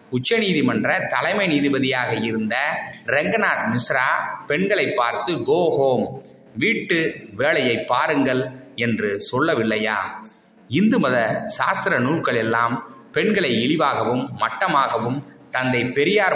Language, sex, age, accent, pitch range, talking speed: Tamil, male, 20-39, native, 115-145 Hz, 90 wpm